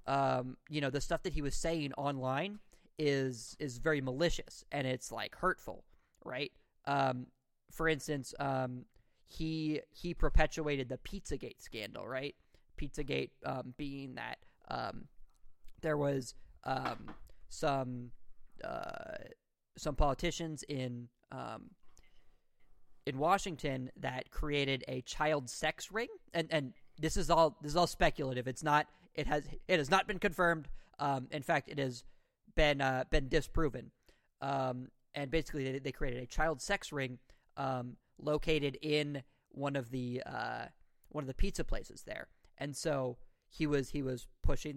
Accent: American